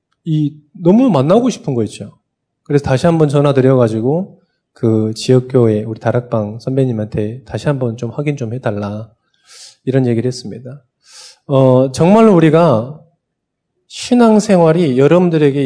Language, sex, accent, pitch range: Korean, male, native, 135-180 Hz